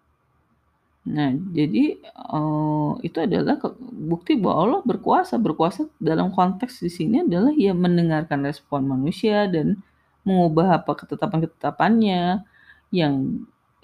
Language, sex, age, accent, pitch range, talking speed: Indonesian, female, 30-49, native, 145-185 Hz, 95 wpm